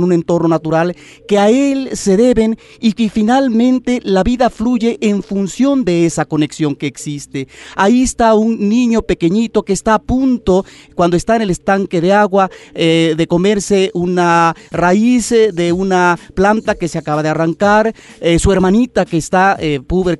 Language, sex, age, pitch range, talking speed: Spanish, male, 40-59, 165-220 Hz, 170 wpm